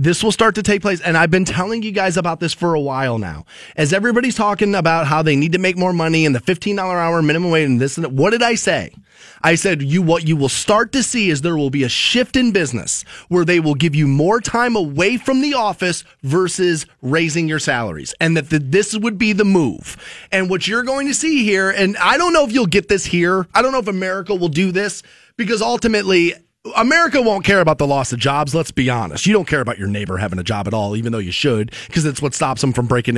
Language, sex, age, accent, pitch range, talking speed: English, male, 30-49, American, 145-210 Hz, 255 wpm